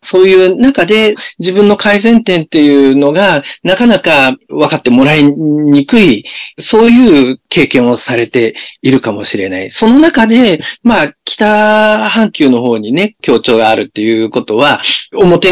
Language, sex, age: Japanese, male, 40-59